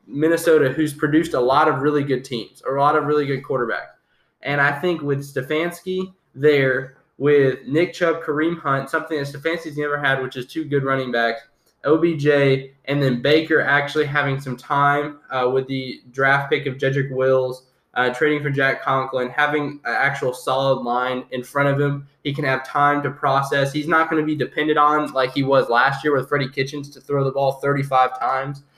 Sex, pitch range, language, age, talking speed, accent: male, 130-150 Hz, English, 10-29, 200 wpm, American